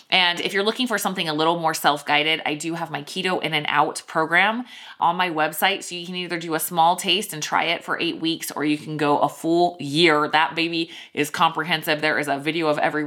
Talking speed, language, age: 245 wpm, English, 20-39